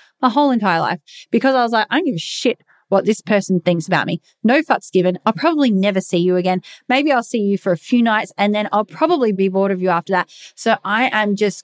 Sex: female